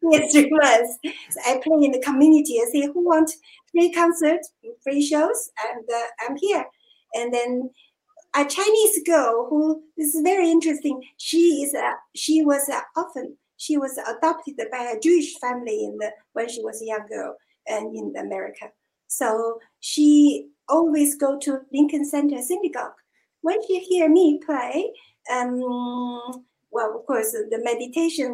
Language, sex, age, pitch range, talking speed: English, female, 50-69, 240-330 Hz, 160 wpm